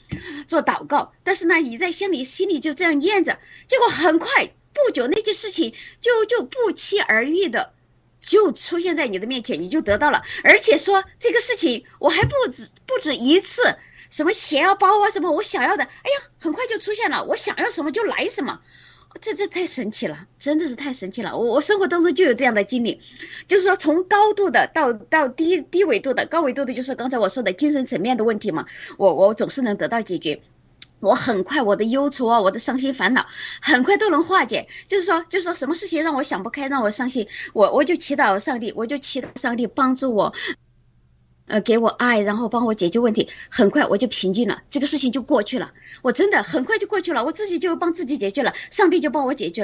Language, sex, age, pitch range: Chinese, female, 20-39, 245-360 Hz